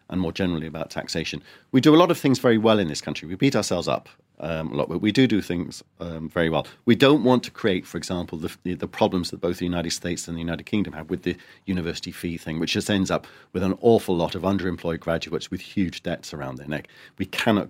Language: English